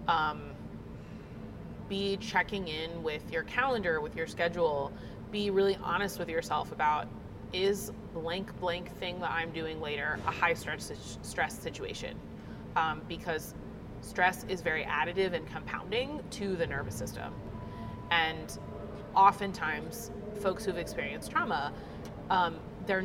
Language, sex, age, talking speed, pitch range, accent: English, female, 30-49, 125 wpm, 165-200 Hz, American